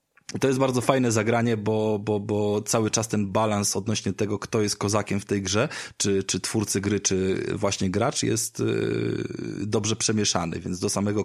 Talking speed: 175 wpm